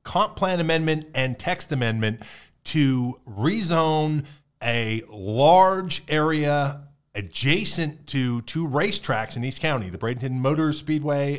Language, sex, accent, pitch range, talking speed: English, male, American, 130-165 Hz, 115 wpm